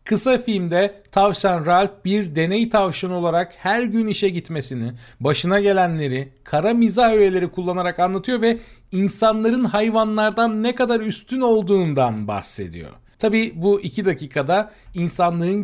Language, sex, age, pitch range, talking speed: Turkish, male, 40-59, 130-210 Hz, 120 wpm